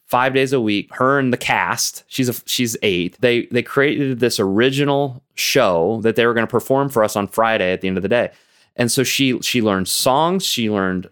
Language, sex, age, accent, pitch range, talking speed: English, male, 20-39, American, 105-140 Hz, 225 wpm